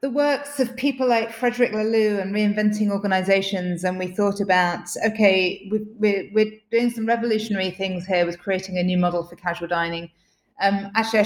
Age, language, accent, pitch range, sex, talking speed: 30-49, English, British, 175-210 Hz, female, 170 wpm